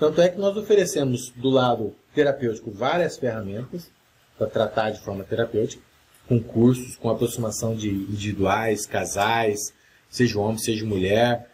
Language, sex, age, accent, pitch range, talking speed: Portuguese, male, 40-59, Brazilian, 115-165 Hz, 135 wpm